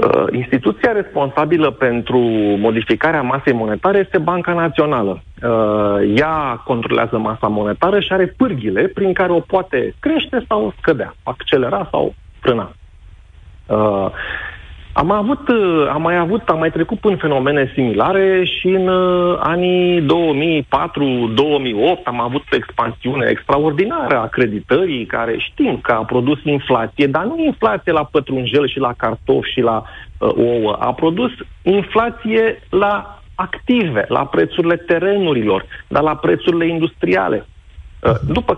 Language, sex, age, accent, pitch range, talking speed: Romanian, male, 40-59, native, 115-175 Hz, 120 wpm